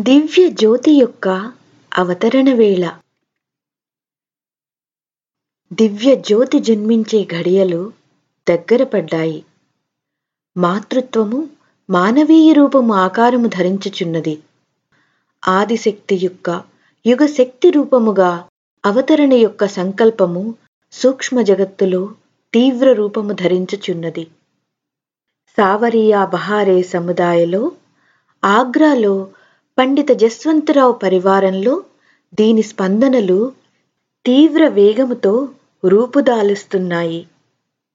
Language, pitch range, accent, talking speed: Telugu, 190-255 Hz, native, 55 wpm